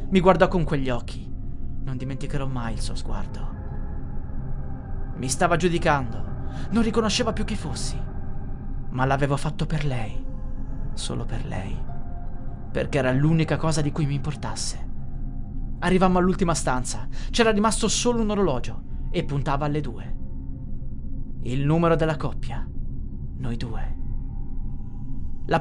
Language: Italian